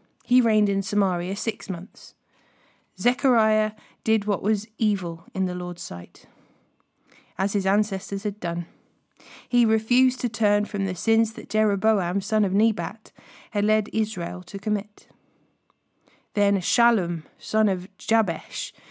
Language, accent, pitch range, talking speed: English, British, 190-235 Hz, 135 wpm